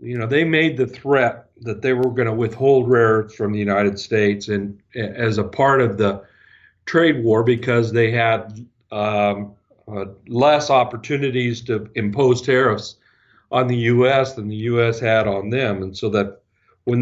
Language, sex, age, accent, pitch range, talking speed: English, male, 50-69, American, 100-120 Hz, 175 wpm